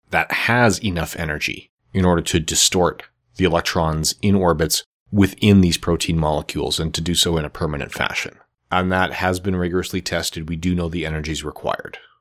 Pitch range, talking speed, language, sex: 85-100 Hz, 175 wpm, English, male